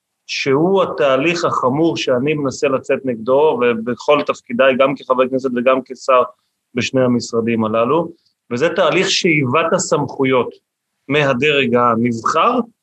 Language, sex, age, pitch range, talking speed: Hebrew, male, 30-49, 130-165 Hz, 110 wpm